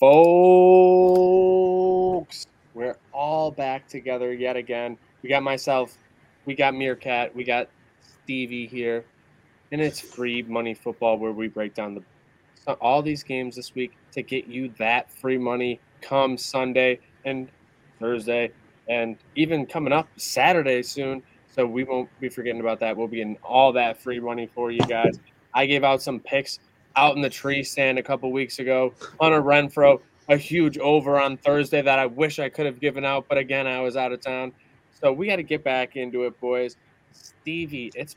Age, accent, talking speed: 20-39, American, 175 wpm